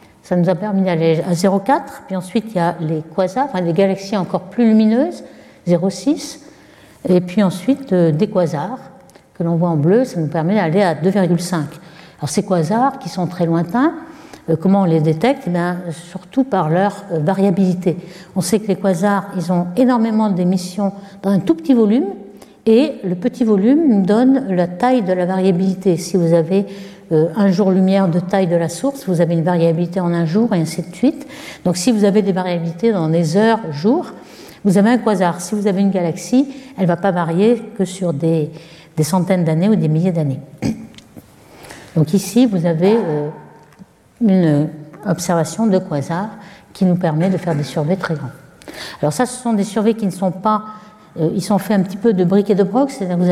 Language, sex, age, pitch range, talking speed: French, female, 60-79, 175-215 Hz, 200 wpm